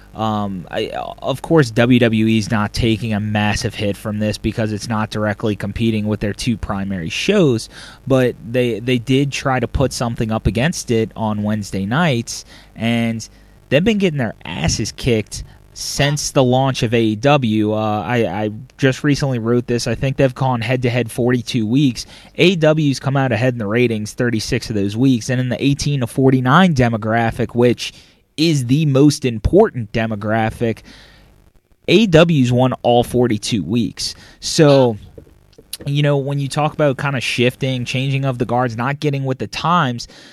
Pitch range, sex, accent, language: 110-130 Hz, male, American, English